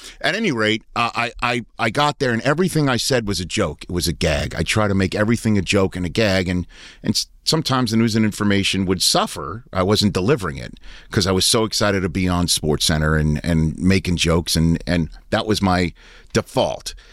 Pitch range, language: 90-110 Hz, English